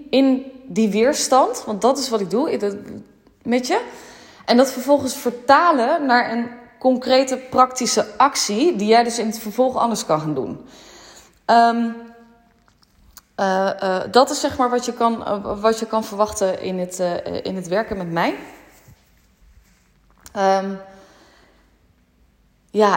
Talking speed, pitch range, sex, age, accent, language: 125 wpm, 195-255 Hz, female, 20-39, Dutch, Dutch